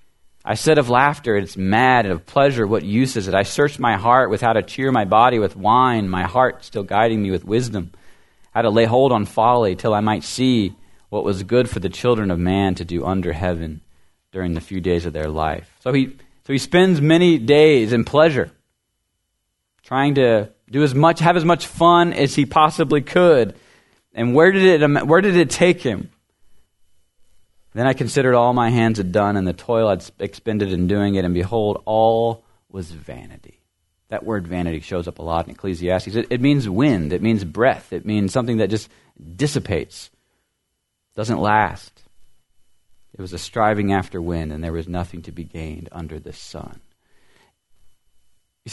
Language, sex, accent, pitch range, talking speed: English, male, American, 90-130 Hz, 190 wpm